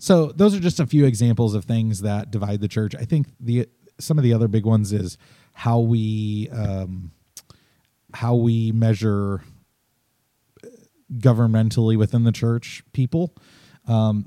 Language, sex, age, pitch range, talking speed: English, male, 30-49, 105-130 Hz, 145 wpm